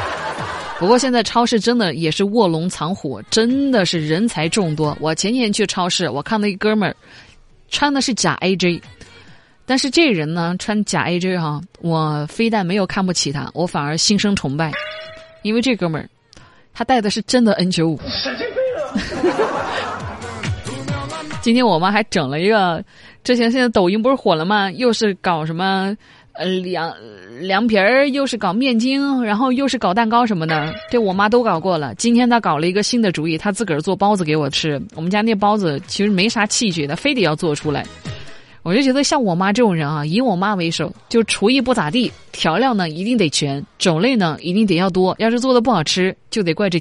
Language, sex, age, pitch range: Chinese, female, 20-39, 160-235 Hz